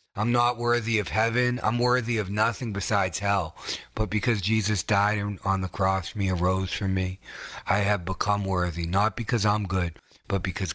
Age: 40-59